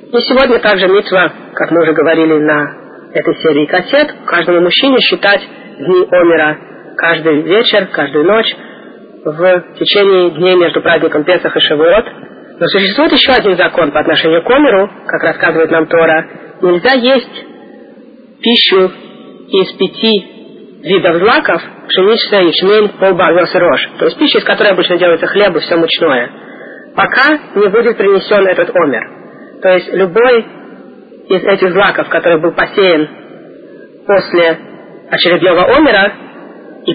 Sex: female